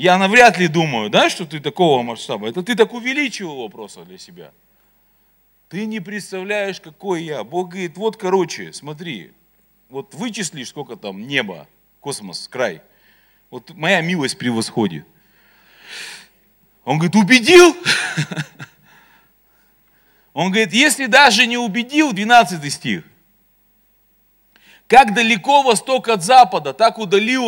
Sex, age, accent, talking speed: male, 40-59, native, 120 wpm